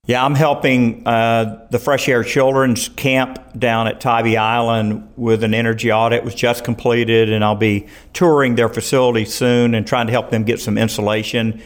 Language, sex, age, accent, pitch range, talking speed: English, male, 50-69, American, 115-140 Hz, 185 wpm